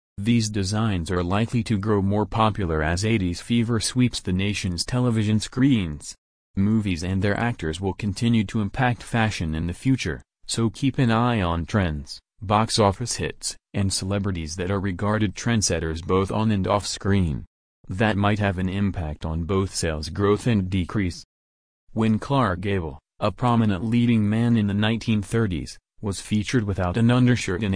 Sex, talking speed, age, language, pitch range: male, 160 wpm, 30-49, English, 95-115 Hz